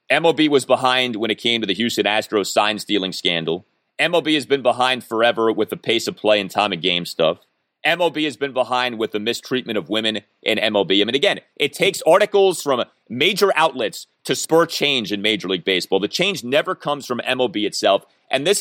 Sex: male